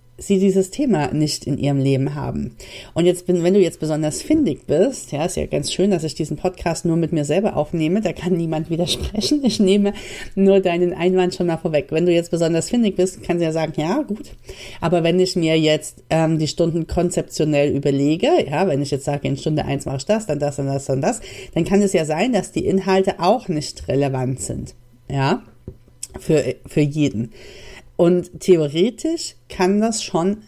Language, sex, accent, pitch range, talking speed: German, female, German, 150-200 Hz, 200 wpm